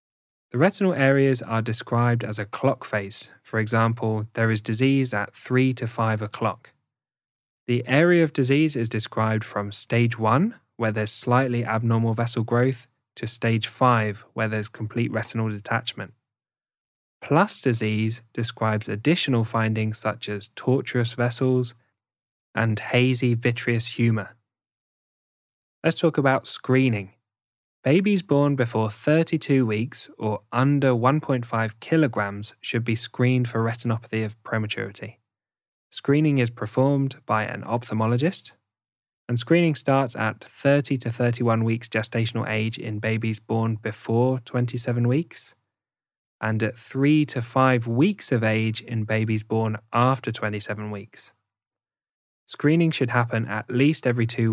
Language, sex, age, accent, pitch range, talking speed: English, male, 10-29, British, 110-130 Hz, 130 wpm